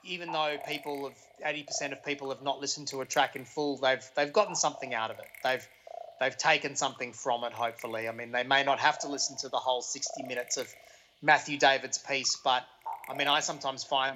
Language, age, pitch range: English, 30-49, 135-190 Hz